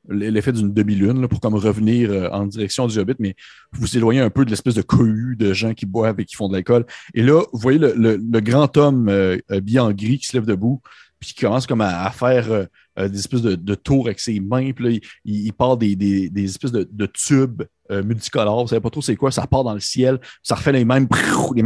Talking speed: 265 wpm